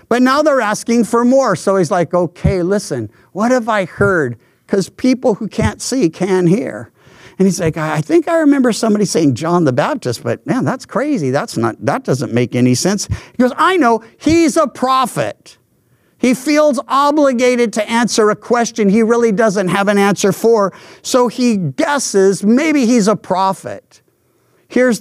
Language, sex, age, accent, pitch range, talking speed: English, male, 50-69, American, 175-250 Hz, 180 wpm